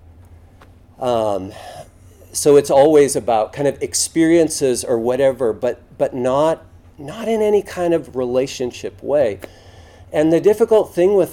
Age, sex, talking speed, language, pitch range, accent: 40-59, male, 130 wpm, English, 110-170 Hz, American